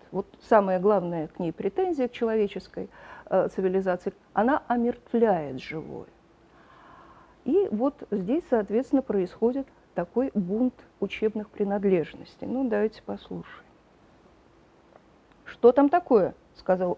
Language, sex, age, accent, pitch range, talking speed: Russian, female, 50-69, native, 205-280 Hz, 105 wpm